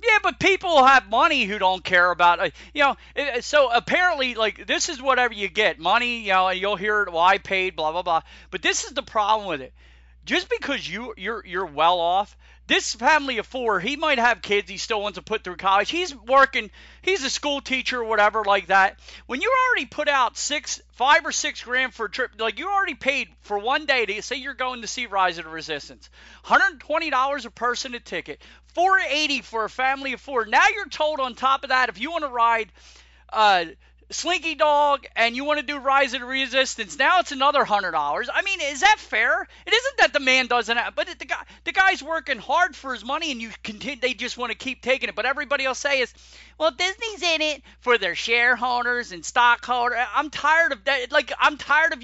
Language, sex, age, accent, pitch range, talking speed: English, male, 40-59, American, 220-295 Hz, 225 wpm